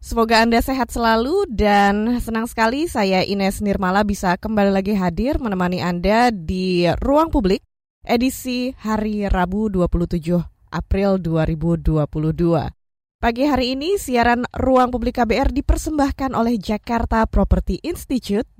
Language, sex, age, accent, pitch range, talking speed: Indonesian, female, 20-39, native, 185-245 Hz, 120 wpm